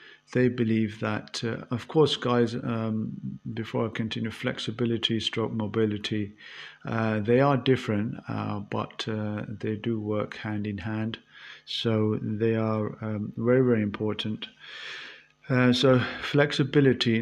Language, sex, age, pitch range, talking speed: English, male, 50-69, 105-125 Hz, 130 wpm